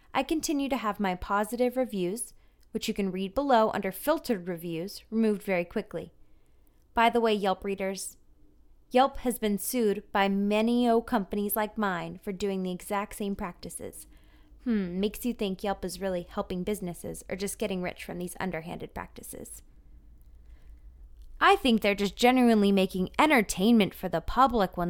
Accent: American